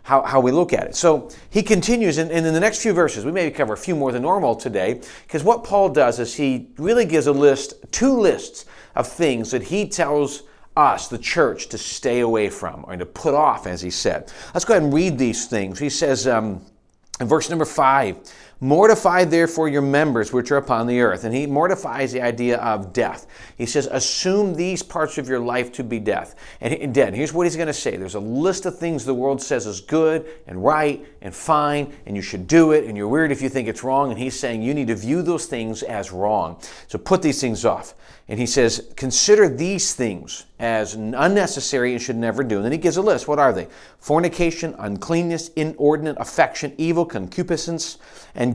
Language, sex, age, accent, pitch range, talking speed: English, male, 40-59, American, 120-160 Hz, 220 wpm